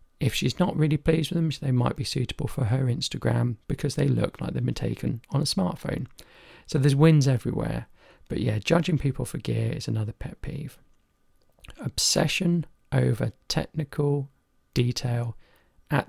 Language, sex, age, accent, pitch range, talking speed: English, male, 40-59, British, 120-155 Hz, 160 wpm